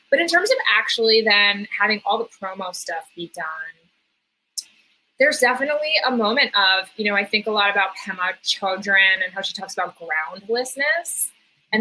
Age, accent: 20-39, American